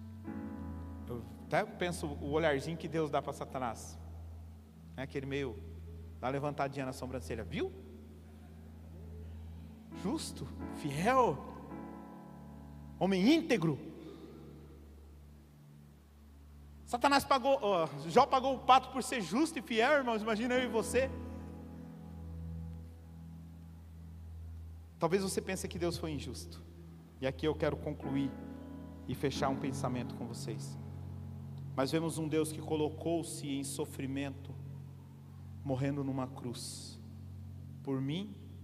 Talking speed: 105 wpm